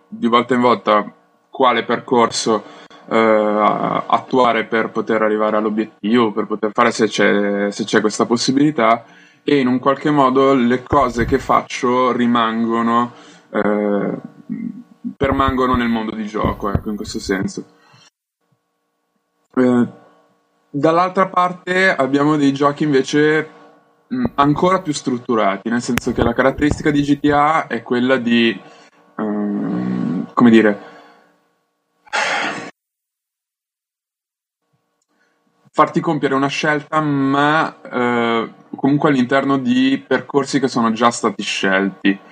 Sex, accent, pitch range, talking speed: male, native, 110-140 Hz, 110 wpm